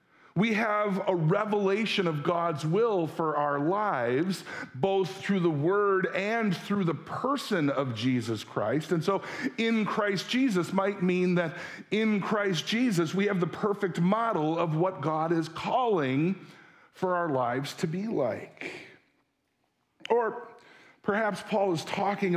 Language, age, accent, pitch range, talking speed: English, 50-69, American, 145-200 Hz, 140 wpm